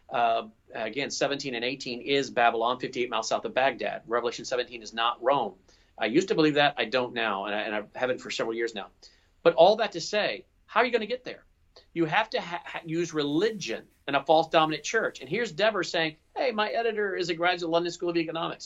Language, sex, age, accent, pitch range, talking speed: English, male, 40-59, American, 145-195 Hz, 225 wpm